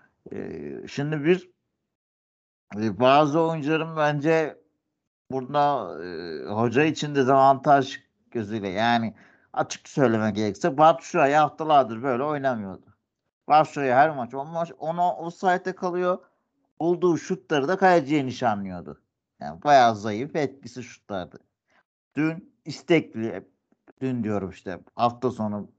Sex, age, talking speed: male, 60-79, 105 wpm